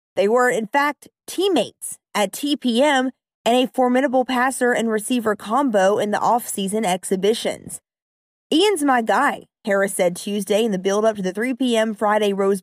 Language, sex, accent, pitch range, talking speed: English, female, American, 200-255 Hz, 155 wpm